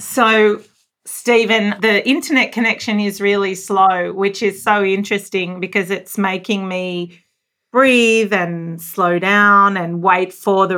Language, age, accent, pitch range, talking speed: English, 40-59, Australian, 180-210 Hz, 135 wpm